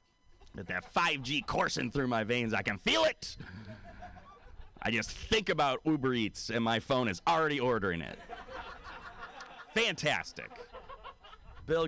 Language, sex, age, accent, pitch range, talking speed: English, male, 30-49, American, 90-135 Hz, 130 wpm